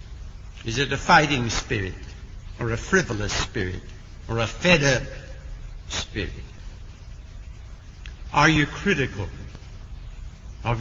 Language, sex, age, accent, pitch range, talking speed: English, male, 60-79, American, 95-135 Hz, 100 wpm